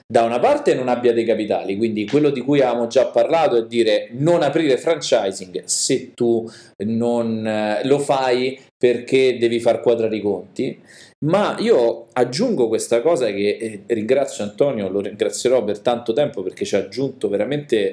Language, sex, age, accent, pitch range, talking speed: Italian, male, 40-59, native, 110-150 Hz, 165 wpm